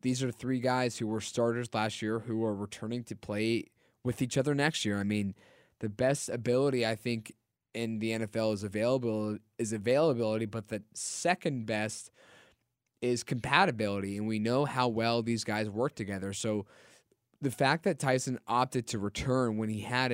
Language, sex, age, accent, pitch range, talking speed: English, male, 20-39, American, 110-130 Hz, 175 wpm